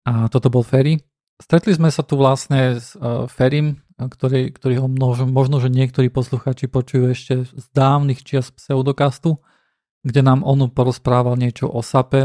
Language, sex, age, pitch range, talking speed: Slovak, male, 40-59, 125-135 Hz, 155 wpm